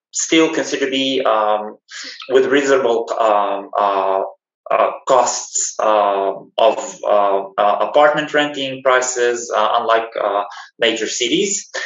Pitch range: 115-160 Hz